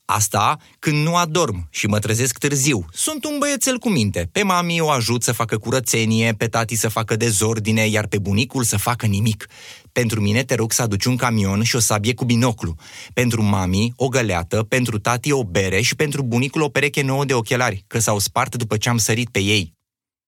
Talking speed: 205 wpm